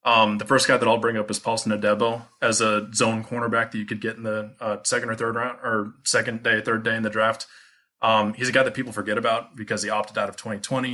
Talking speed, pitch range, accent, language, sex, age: 265 wpm, 105-120 Hz, American, English, male, 20-39